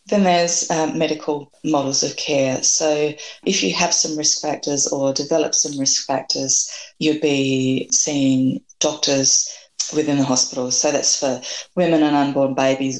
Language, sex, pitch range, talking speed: English, female, 135-155 Hz, 150 wpm